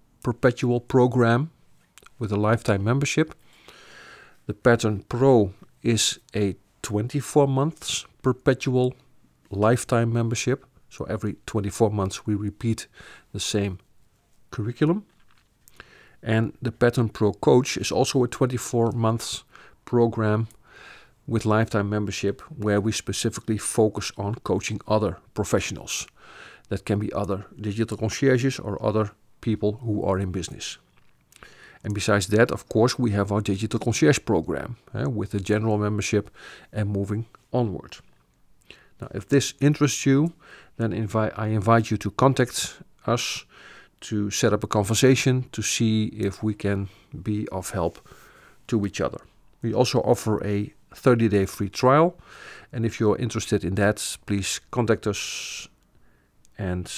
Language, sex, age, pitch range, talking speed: English, male, 50-69, 100-120 Hz, 130 wpm